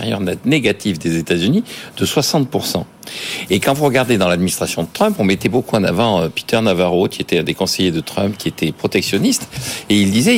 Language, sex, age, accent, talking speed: French, male, 60-79, French, 195 wpm